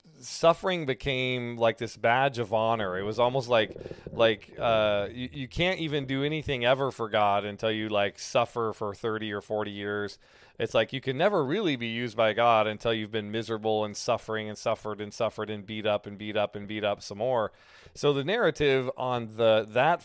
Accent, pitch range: American, 110-135 Hz